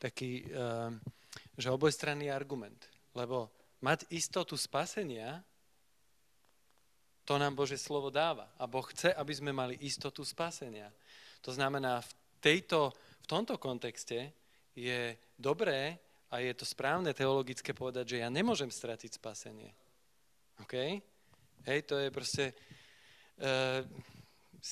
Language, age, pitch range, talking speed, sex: Slovak, 40-59, 125-140 Hz, 115 wpm, male